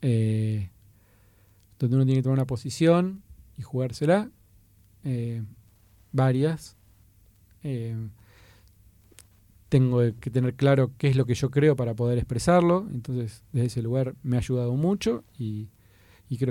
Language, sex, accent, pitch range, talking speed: Spanish, male, Argentinian, 110-150 Hz, 130 wpm